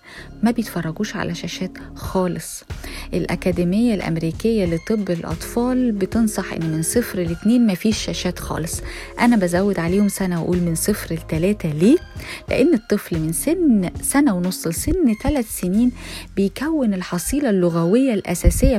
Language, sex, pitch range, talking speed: Arabic, female, 175-235 Hz, 130 wpm